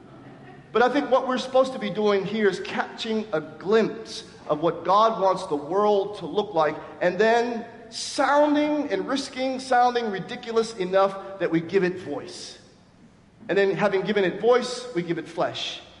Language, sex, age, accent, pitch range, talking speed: English, male, 40-59, American, 150-205 Hz, 170 wpm